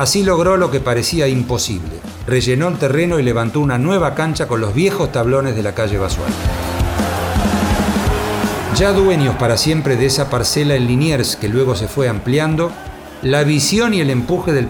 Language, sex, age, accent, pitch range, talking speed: Spanish, male, 40-59, Argentinian, 120-170 Hz, 170 wpm